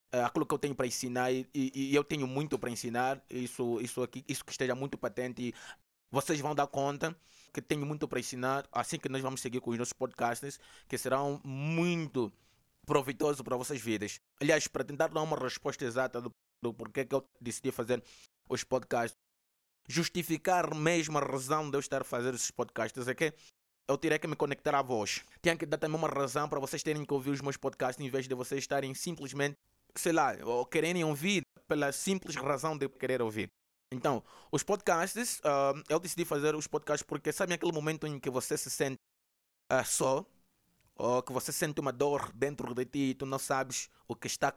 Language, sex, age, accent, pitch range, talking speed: Portuguese, male, 20-39, Brazilian, 125-155 Hz, 205 wpm